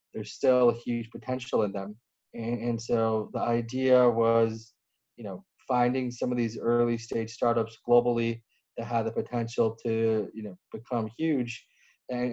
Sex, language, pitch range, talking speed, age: male, English, 110-120 Hz, 160 wpm, 20-39